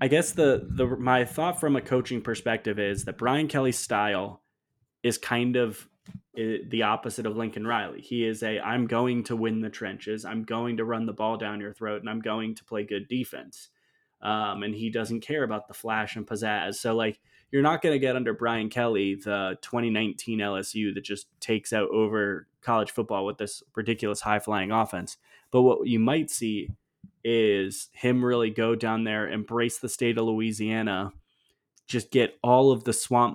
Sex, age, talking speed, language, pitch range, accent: male, 20-39, 190 wpm, English, 110-125 Hz, American